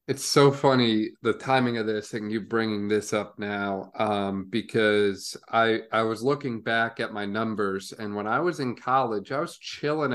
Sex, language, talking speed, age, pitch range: male, English, 190 wpm, 30-49, 105-130 Hz